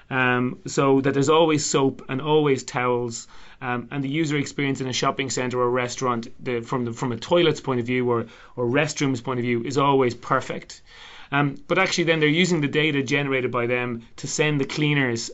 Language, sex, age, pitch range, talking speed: English, male, 30-49, 125-150 Hz, 210 wpm